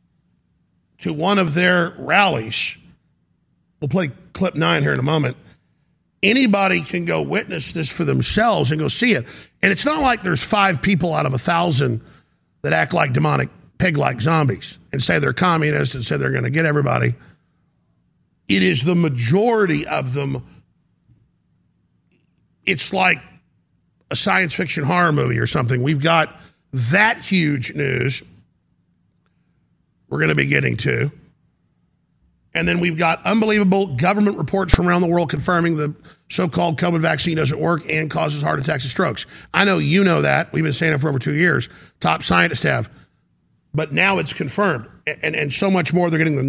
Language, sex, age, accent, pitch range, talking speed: English, male, 50-69, American, 150-180 Hz, 170 wpm